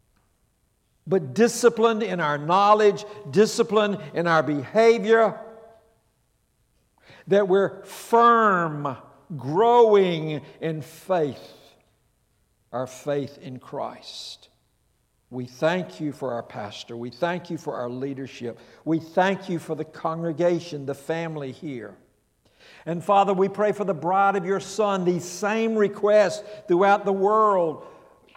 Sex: male